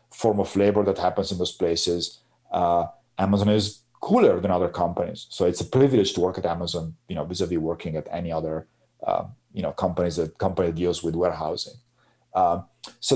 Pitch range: 90-120 Hz